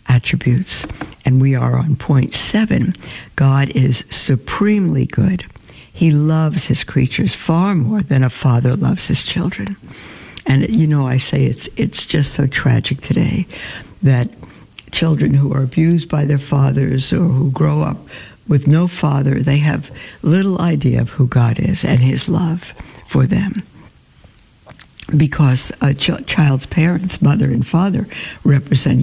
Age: 60-79